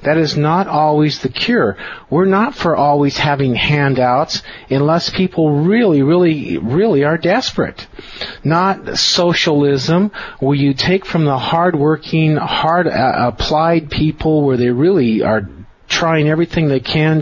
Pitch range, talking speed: 135-165 Hz, 130 wpm